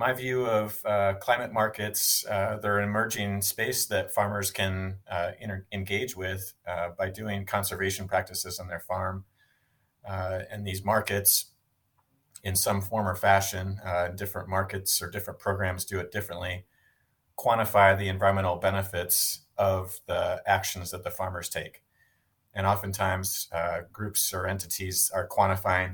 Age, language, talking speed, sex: 30-49, English, 145 wpm, male